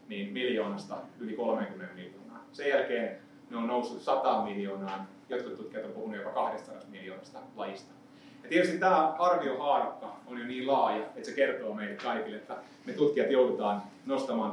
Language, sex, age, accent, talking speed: Finnish, male, 30-49, native, 155 wpm